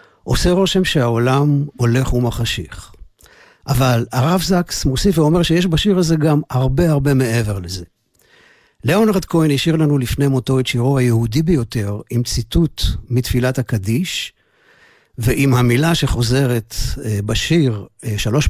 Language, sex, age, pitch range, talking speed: Hebrew, male, 50-69, 115-150 Hz, 120 wpm